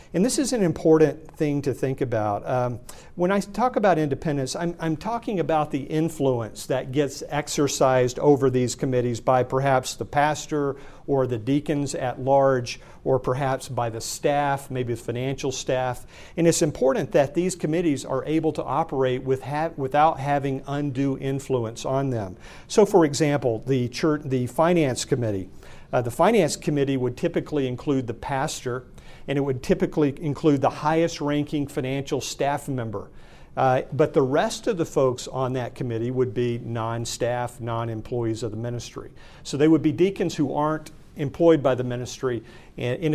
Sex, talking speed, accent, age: male, 165 wpm, American, 50-69